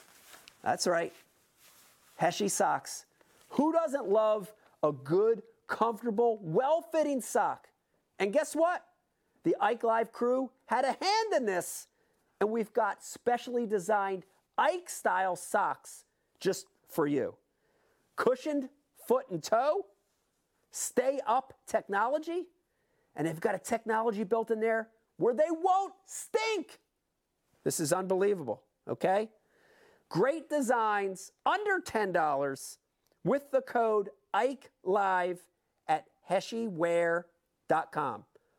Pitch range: 180-305 Hz